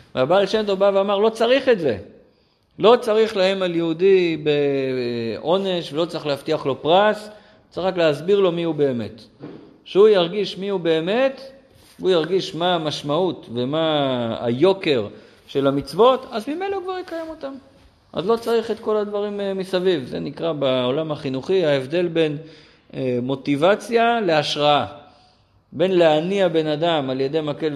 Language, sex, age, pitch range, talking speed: Hebrew, male, 50-69, 125-195 Hz, 145 wpm